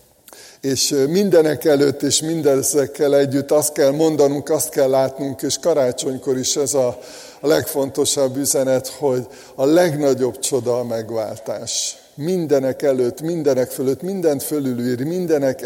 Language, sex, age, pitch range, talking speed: Hungarian, male, 50-69, 125-145 Hz, 125 wpm